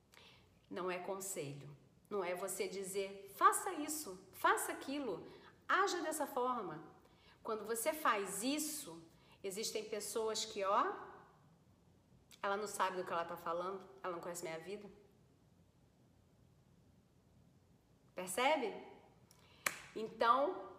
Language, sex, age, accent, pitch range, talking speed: Portuguese, female, 40-59, Brazilian, 185-255 Hz, 105 wpm